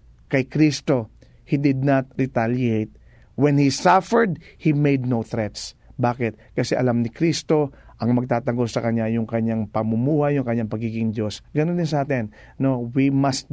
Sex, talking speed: male, 160 wpm